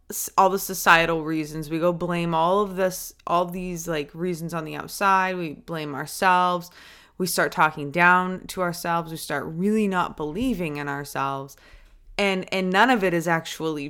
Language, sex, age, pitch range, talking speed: English, female, 20-39, 155-195 Hz, 175 wpm